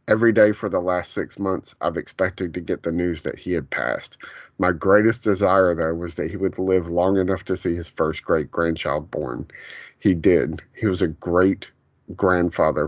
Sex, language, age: male, English, 30-49